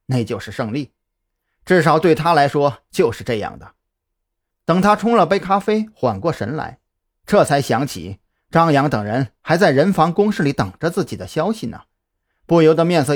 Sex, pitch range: male, 110-175 Hz